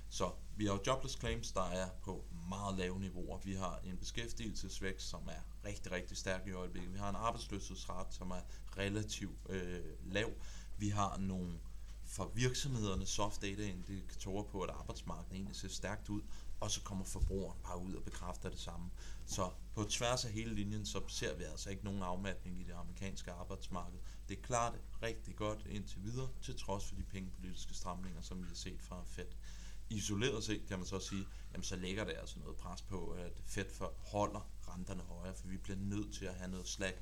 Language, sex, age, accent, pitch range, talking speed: Danish, male, 30-49, native, 90-105 Hz, 200 wpm